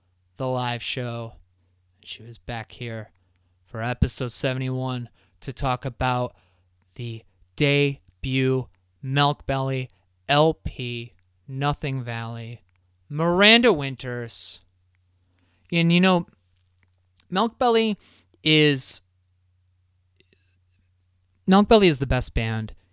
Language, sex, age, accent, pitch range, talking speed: English, male, 20-39, American, 90-135 Hz, 90 wpm